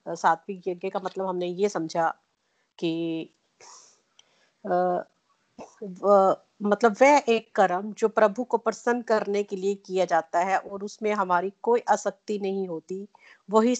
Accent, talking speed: native, 130 wpm